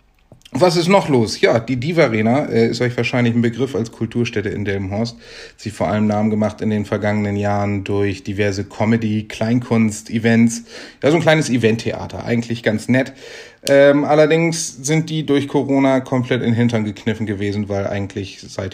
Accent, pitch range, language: German, 110-130 Hz, German